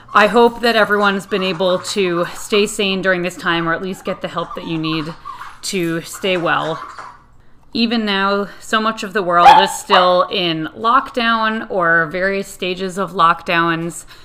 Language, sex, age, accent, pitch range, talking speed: English, female, 30-49, American, 175-215 Hz, 170 wpm